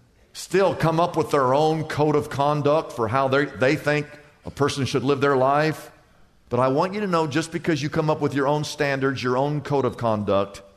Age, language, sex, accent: 50-69, English, male, American